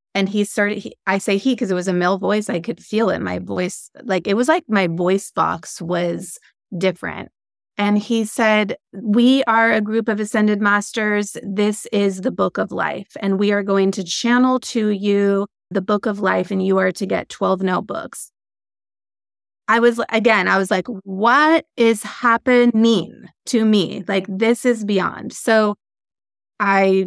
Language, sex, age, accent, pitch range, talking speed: English, female, 20-39, American, 195-230 Hz, 175 wpm